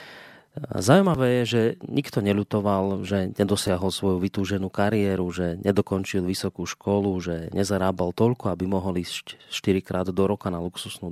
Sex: male